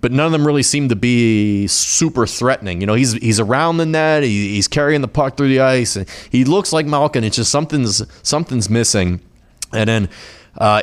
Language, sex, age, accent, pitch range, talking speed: English, male, 30-49, American, 95-115 Hz, 210 wpm